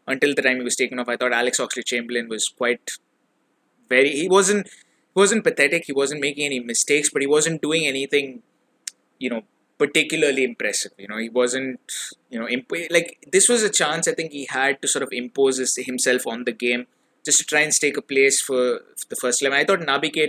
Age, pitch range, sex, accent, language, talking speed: 20-39, 120-145 Hz, male, Indian, English, 215 wpm